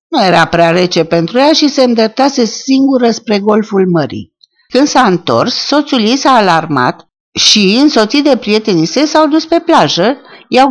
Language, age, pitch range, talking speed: Romanian, 50-69, 175-255 Hz, 170 wpm